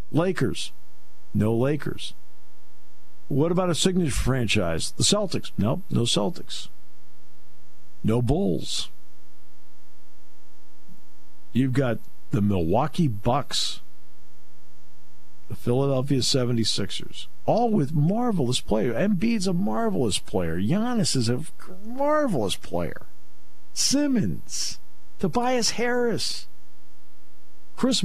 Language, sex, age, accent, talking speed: English, male, 50-69, American, 85 wpm